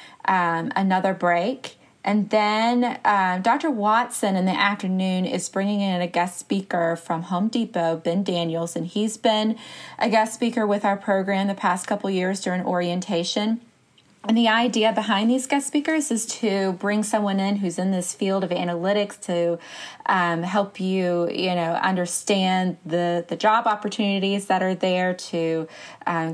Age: 30-49